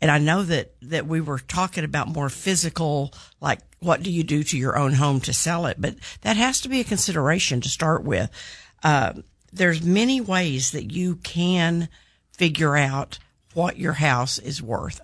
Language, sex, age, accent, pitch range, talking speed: English, female, 50-69, American, 140-175 Hz, 190 wpm